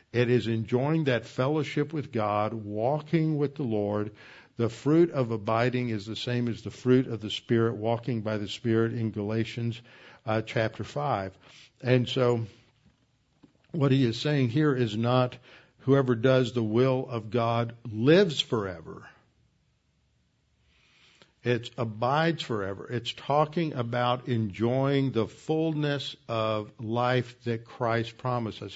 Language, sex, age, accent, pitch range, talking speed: English, male, 60-79, American, 110-130 Hz, 135 wpm